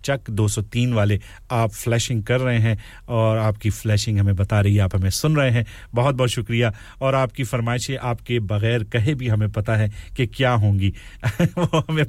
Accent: Indian